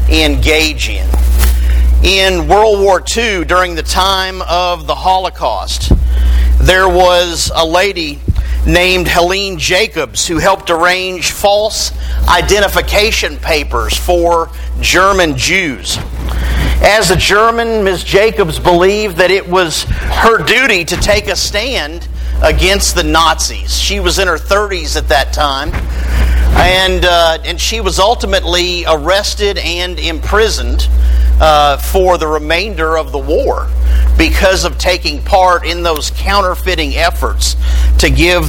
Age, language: 50-69, English